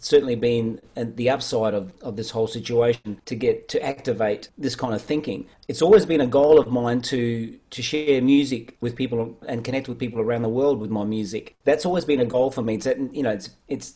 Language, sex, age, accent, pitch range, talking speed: English, male, 40-59, Australian, 120-145 Hz, 225 wpm